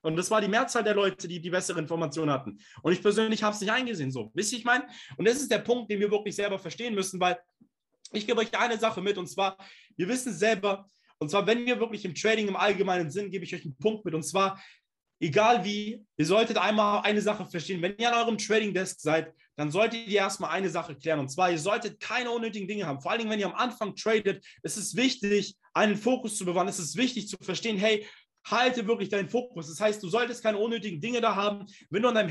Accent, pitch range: German, 180-220 Hz